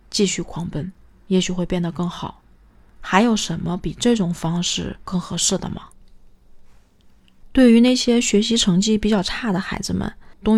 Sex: female